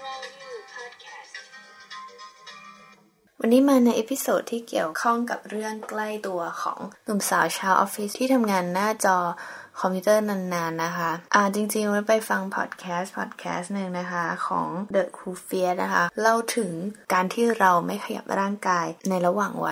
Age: 20-39